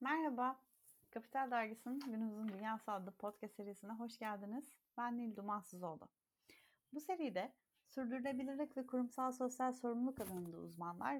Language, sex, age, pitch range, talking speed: Turkish, female, 30-49, 185-250 Hz, 125 wpm